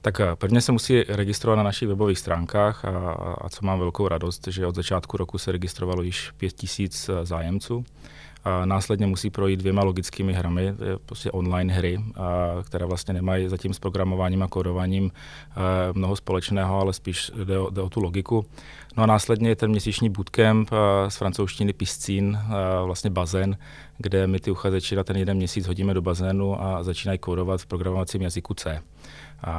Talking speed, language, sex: 170 wpm, Czech, male